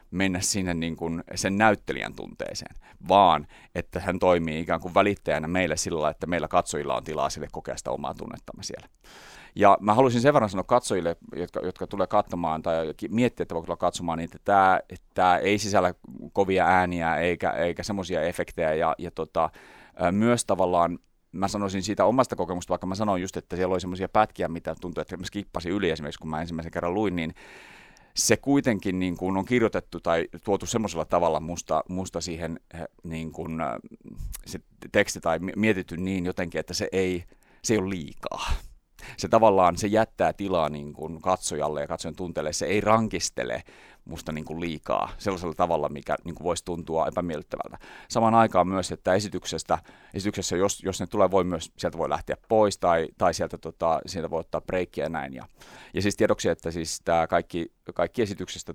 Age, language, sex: 30-49, Finnish, male